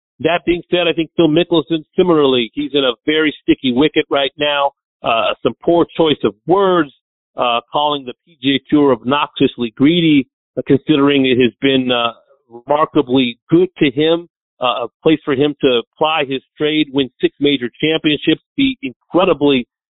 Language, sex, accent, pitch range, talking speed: English, male, American, 135-155 Hz, 165 wpm